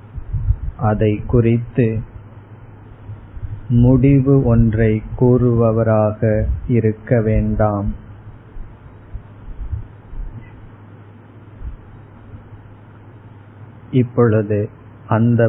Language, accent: Tamil, native